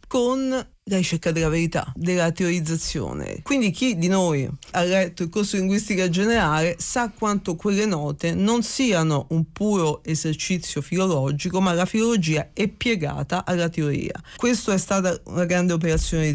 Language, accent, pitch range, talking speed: Italian, native, 160-205 Hz, 150 wpm